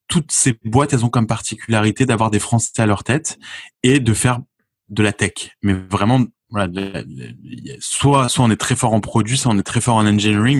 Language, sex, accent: French, male, French